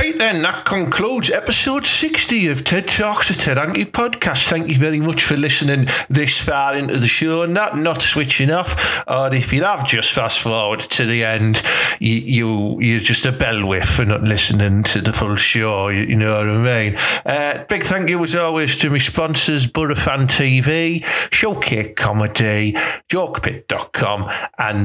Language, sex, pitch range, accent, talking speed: English, male, 110-155 Hz, British, 180 wpm